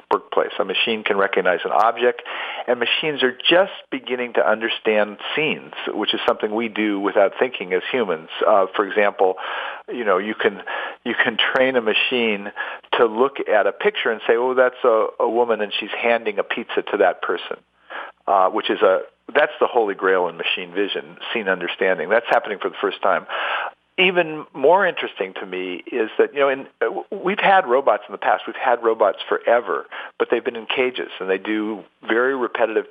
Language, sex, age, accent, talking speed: English, male, 50-69, American, 190 wpm